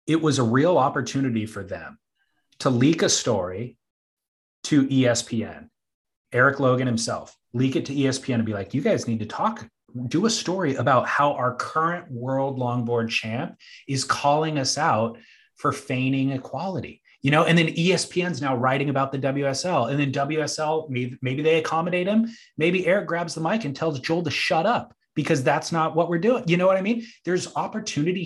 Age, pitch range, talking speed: 30-49, 130-170 Hz, 185 wpm